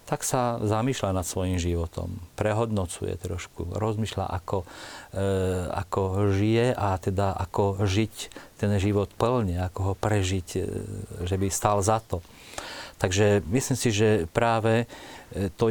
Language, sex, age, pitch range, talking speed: Slovak, male, 40-59, 95-115 Hz, 135 wpm